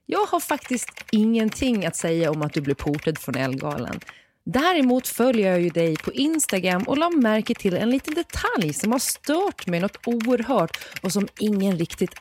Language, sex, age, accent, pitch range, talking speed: Swedish, female, 30-49, native, 170-250 Hz, 180 wpm